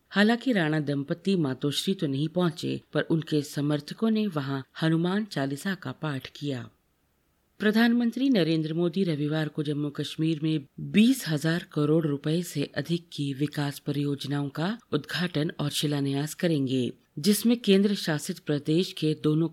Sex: female